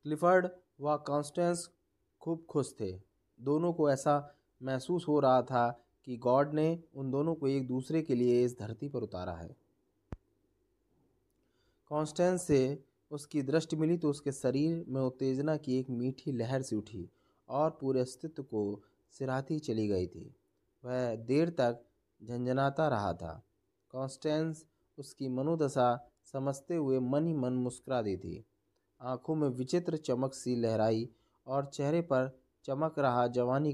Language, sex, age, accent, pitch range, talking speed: Hindi, male, 20-39, native, 125-150 Hz, 145 wpm